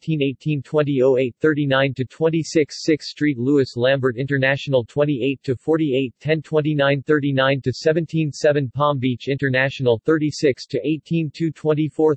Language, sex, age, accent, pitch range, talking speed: English, male, 40-59, American, 125-150 Hz, 140 wpm